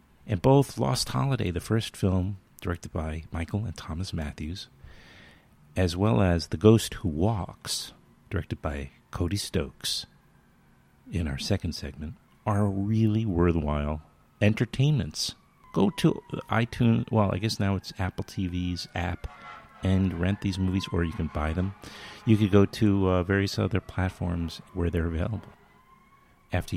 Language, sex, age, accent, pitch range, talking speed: English, male, 50-69, American, 80-105 Hz, 145 wpm